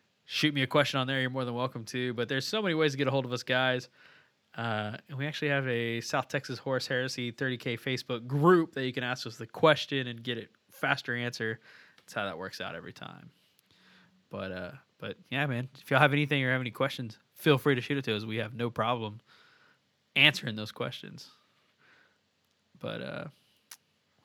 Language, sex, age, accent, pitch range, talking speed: English, male, 20-39, American, 120-145 Hz, 210 wpm